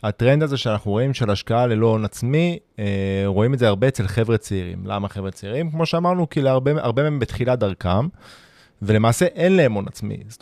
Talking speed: 195 wpm